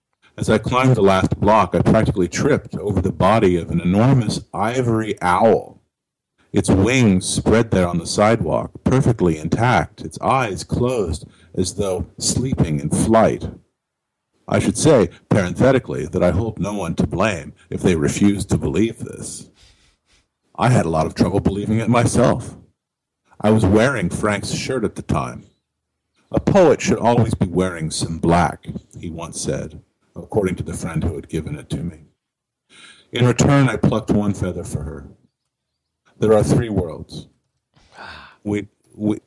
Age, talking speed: 50-69, 155 wpm